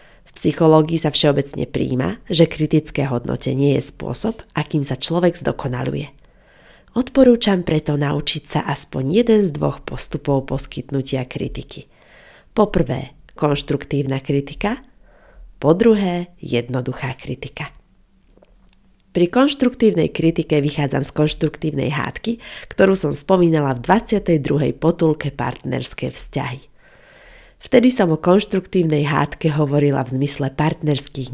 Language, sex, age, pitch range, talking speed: Slovak, female, 30-49, 140-185 Hz, 105 wpm